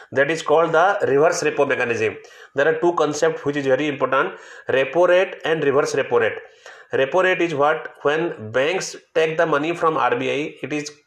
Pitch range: 140-170 Hz